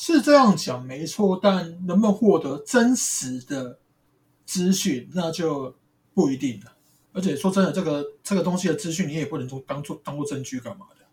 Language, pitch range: Chinese, 135-195 Hz